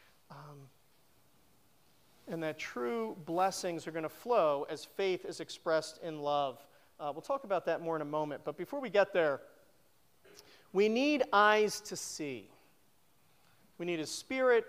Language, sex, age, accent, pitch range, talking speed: English, male, 40-59, American, 165-215 Hz, 155 wpm